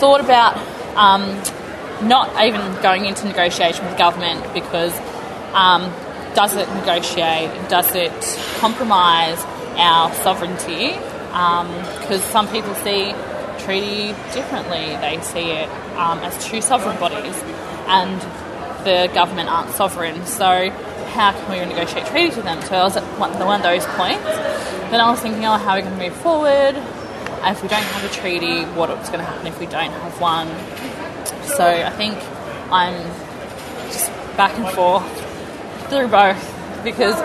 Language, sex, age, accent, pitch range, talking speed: English, female, 20-39, Australian, 180-225 Hz, 155 wpm